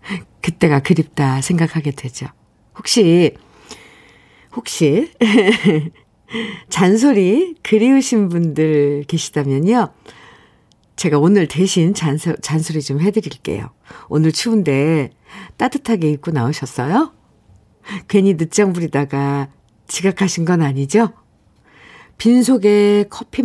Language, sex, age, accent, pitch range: Korean, female, 50-69, native, 155-215 Hz